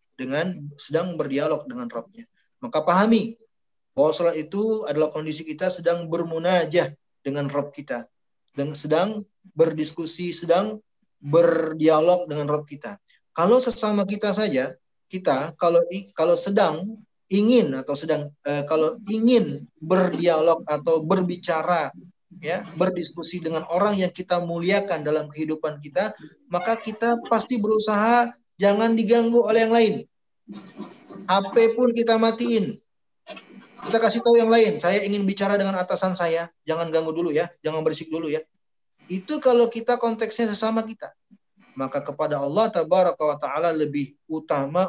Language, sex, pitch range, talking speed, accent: Indonesian, male, 155-215 Hz, 130 wpm, native